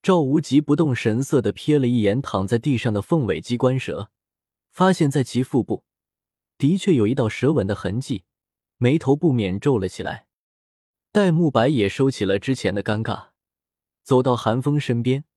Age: 20-39